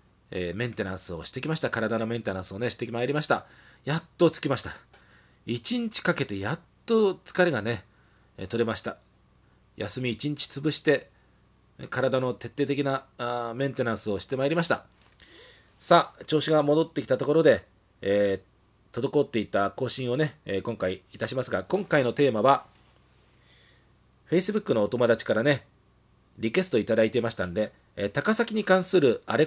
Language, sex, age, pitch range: Japanese, male, 40-59, 110-160 Hz